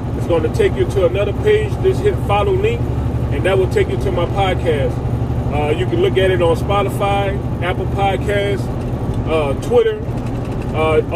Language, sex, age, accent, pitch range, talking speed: English, male, 30-49, American, 120-160 Hz, 170 wpm